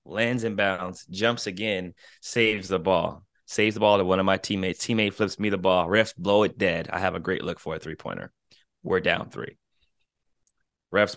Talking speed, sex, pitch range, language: 200 wpm, male, 90-105 Hz, English